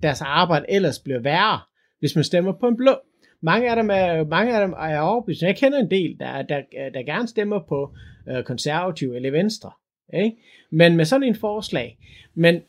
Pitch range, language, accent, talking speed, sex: 150-220 Hz, Danish, native, 175 wpm, male